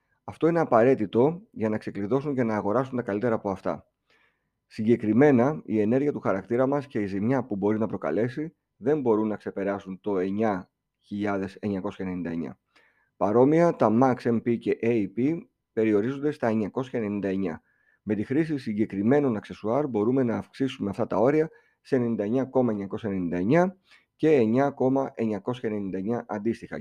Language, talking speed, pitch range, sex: Greek, 130 wpm, 105-135 Hz, male